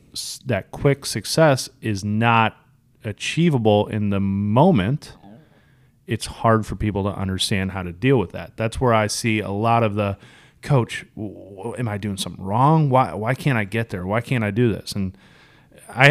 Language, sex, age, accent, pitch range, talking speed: English, male, 30-49, American, 100-135 Hz, 175 wpm